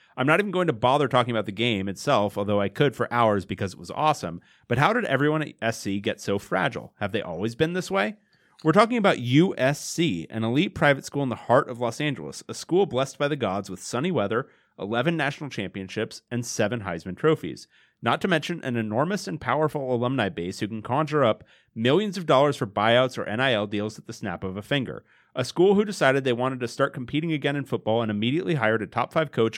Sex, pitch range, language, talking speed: male, 115-155 Hz, English, 225 wpm